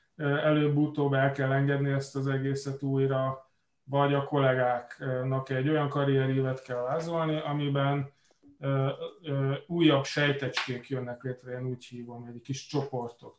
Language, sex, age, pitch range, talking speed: Hungarian, male, 30-49, 130-150 Hz, 120 wpm